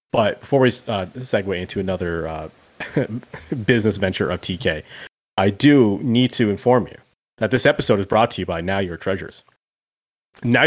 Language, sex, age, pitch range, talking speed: English, male, 30-49, 100-135 Hz, 170 wpm